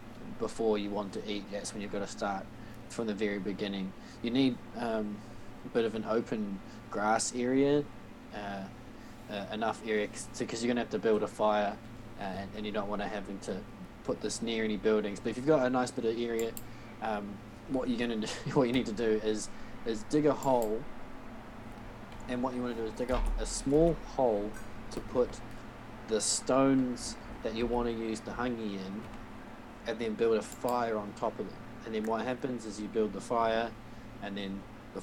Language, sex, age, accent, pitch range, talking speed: English, male, 20-39, Australian, 105-120 Hz, 205 wpm